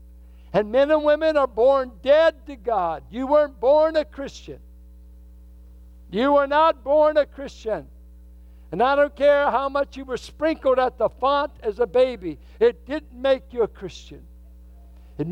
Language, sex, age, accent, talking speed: English, male, 60-79, American, 165 wpm